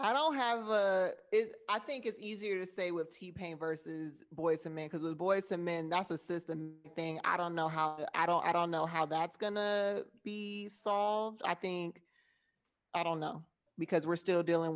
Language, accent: English, American